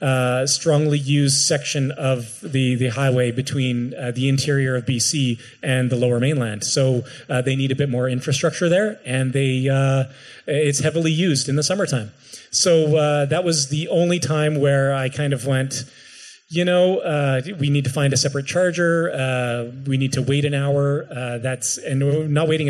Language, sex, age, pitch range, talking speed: English, male, 30-49, 130-150 Hz, 190 wpm